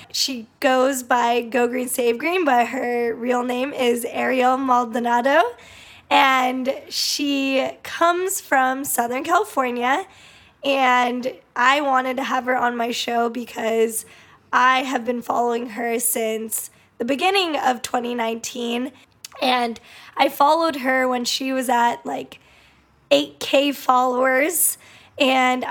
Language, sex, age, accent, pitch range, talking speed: English, female, 10-29, American, 245-275 Hz, 120 wpm